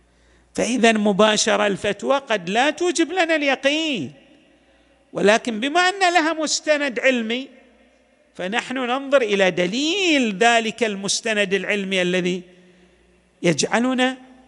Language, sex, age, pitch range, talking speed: Arabic, male, 50-69, 190-270 Hz, 95 wpm